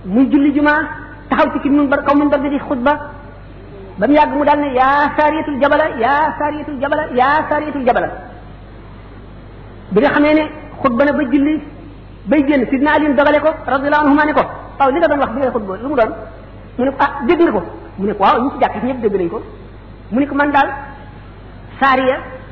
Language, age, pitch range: French, 50-69, 245-285 Hz